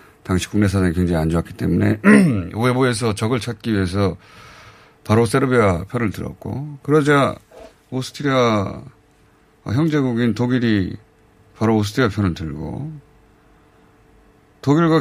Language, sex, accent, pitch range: Korean, male, native, 105-145 Hz